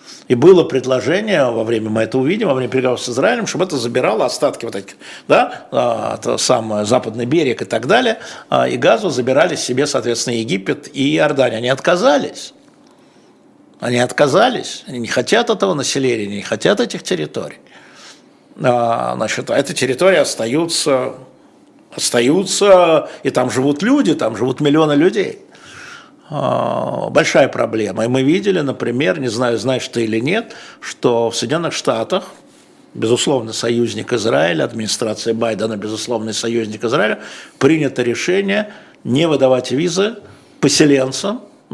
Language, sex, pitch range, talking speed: Russian, male, 115-170 Hz, 130 wpm